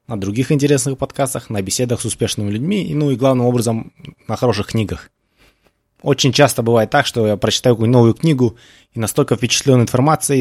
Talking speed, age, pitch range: 180 wpm, 20-39, 110-135 Hz